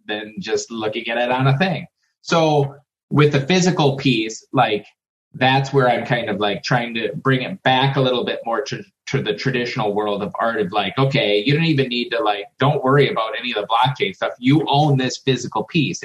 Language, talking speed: English, 215 wpm